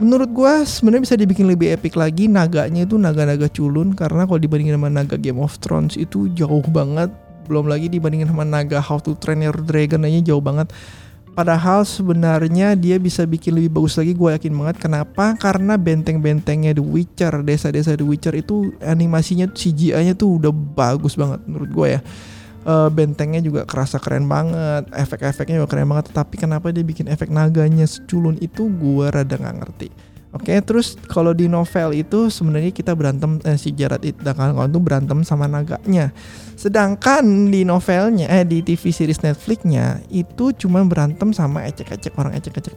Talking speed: 165 wpm